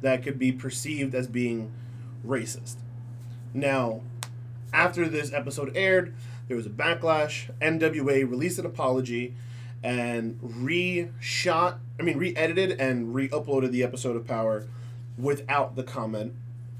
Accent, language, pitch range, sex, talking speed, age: American, English, 120-135 Hz, male, 130 wpm, 30-49